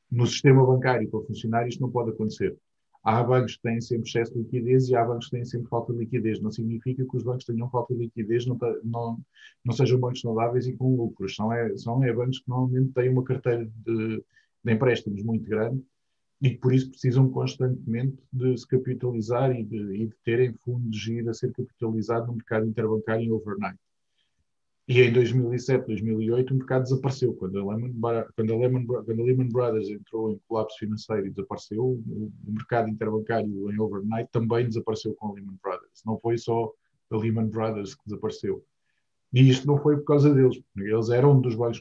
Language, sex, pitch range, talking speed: Portuguese, male, 110-125 Hz, 195 wpm